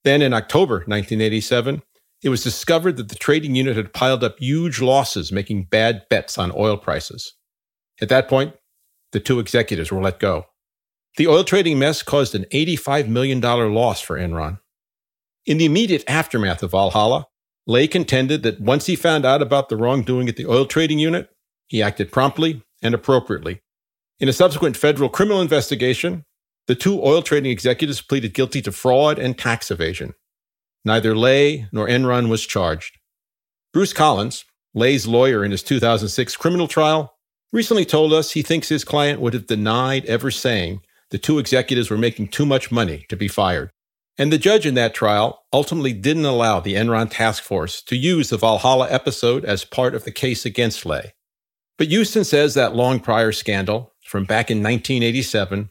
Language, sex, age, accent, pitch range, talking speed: English, male, 40-59, American, 110-145 Hz, 170 wpm